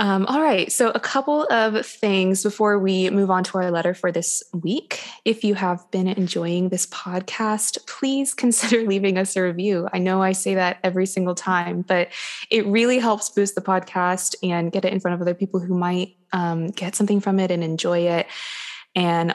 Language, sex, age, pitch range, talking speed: English, female, 20-39, 180-220 Hz, 200 wpm